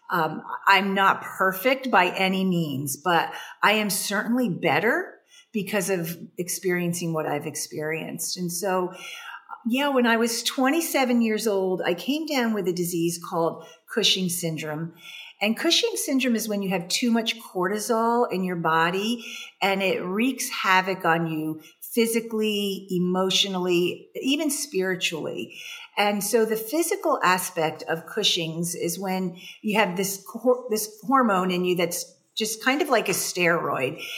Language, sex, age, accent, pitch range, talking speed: English, female, 50-69, American, 175-220 Hz, 145 wpm